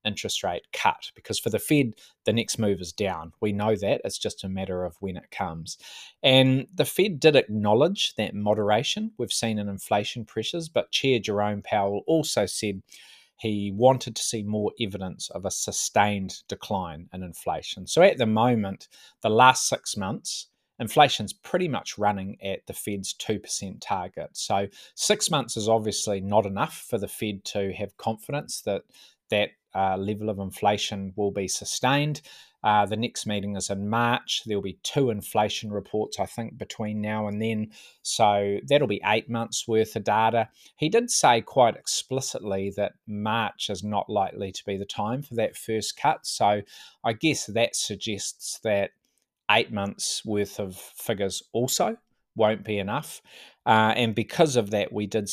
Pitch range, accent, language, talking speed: 100-115 Hz, Australian, English, 170 wpm